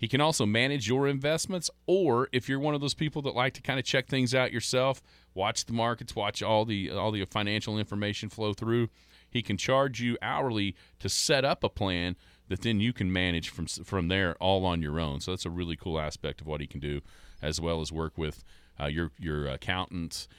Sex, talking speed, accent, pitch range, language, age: male, 225 wpm, American, 80-110 Hz, English, 40-59